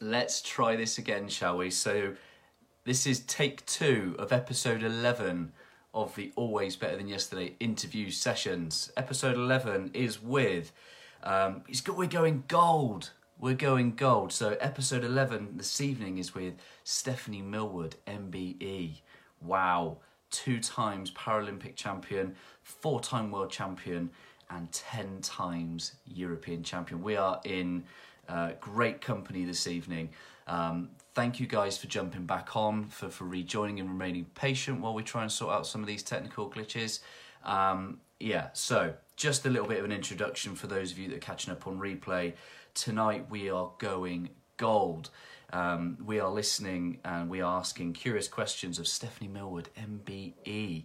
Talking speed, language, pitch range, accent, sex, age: 155 wpm, English, 90-120 Hz, British, male, 30-49